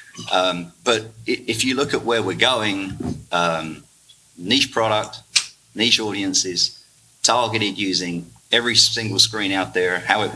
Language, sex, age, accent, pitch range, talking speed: English, male, 40-59, Australian, 85-115 Hz, 135 wpm